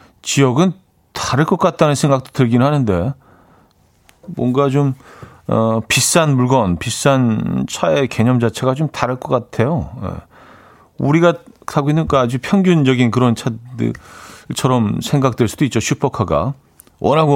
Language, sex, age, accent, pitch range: Korean, male, 40-59, native, 100-145 Hz